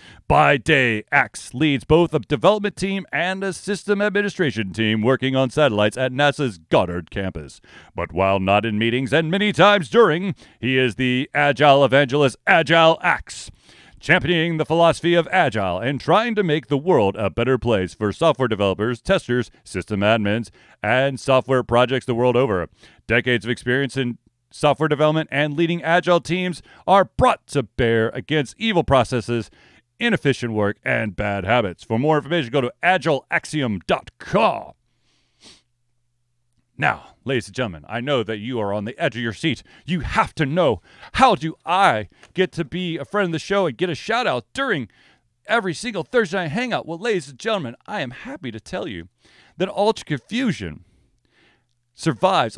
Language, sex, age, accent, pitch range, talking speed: English, male, 40-59, American, 115-170 Hz, 165 wpm